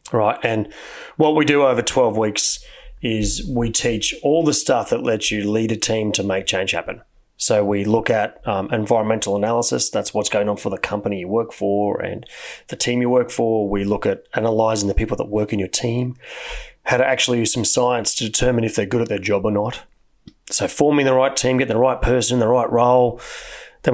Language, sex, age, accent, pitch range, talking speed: English, male, 30-49, Australian, 110-130 Hz, 220 wpm